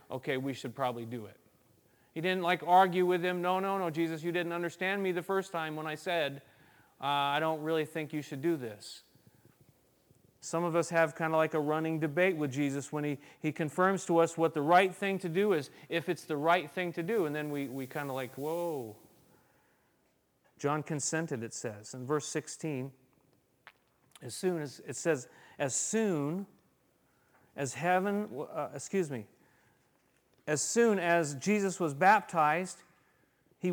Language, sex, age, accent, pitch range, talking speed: English, male, 40-59, American, 145-190 Hz, 180 wpm